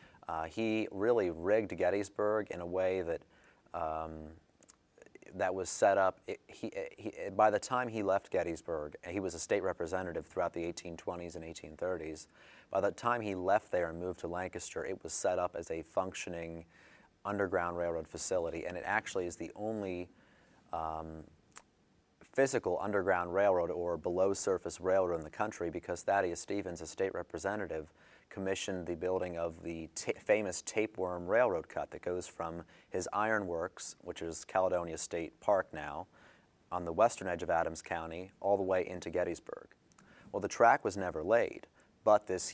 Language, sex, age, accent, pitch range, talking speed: English, male, 30-49, American, 85-95 Hz, 160 wpm